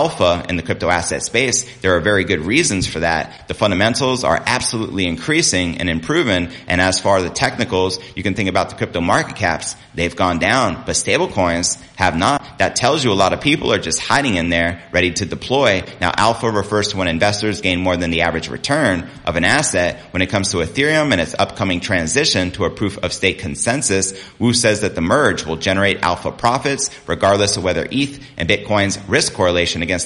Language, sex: English, male